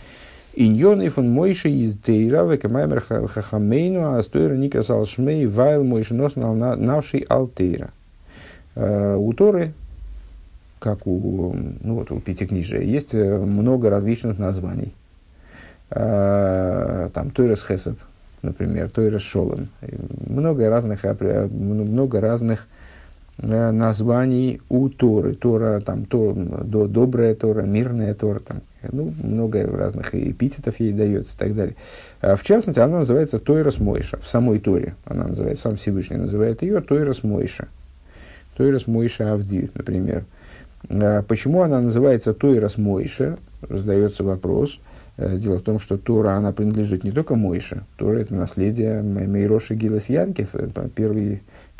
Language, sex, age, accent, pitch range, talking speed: Russian, male, 50-69, native, 100-125 Hz, 110 wpm